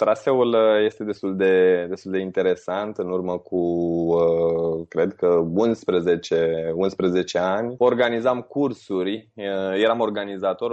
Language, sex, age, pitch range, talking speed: Romanian, male, 20-39, 90-115 Hz, 105 wpm